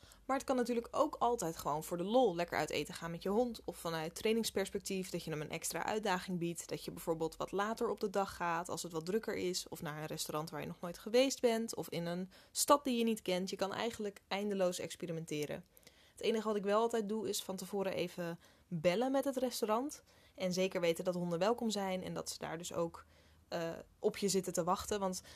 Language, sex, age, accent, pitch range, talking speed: Dutch, female, 10-29, Dutch, 170-205 Hz, 235 wpm